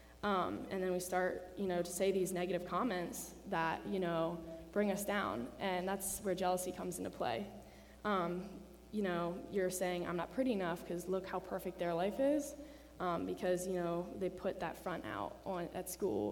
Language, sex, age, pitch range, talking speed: English, female, 10-29, 175-195 Hz, 195 wpm